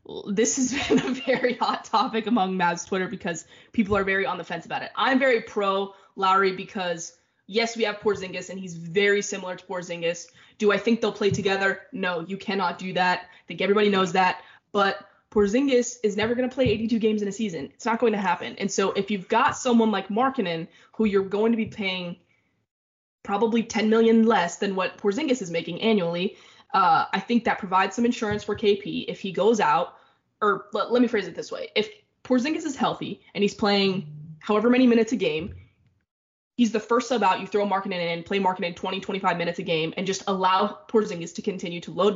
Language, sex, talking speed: English, female, 210 wpm